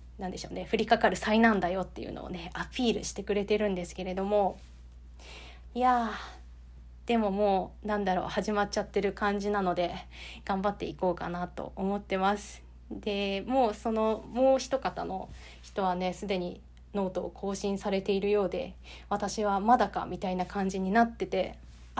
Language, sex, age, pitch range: Japanese, female, 20-39, 185-225 Hz